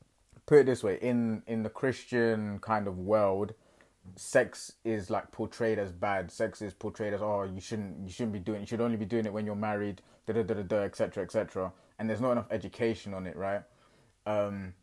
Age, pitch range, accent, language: 20-39, 100-120 Hz, British, English